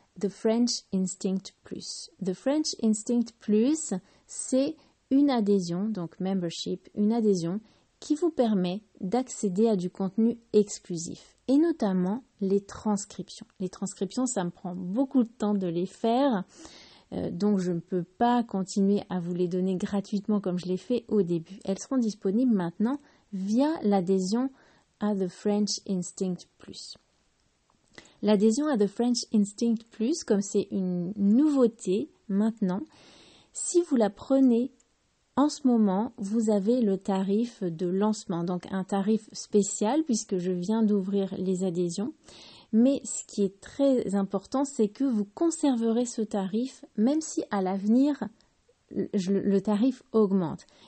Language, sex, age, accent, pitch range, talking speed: French, female, 30-49, French, 195-240 Hz, 140 wpm